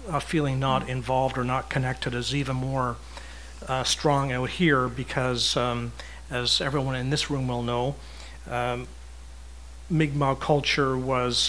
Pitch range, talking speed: 120-140 Hz, 140 wpm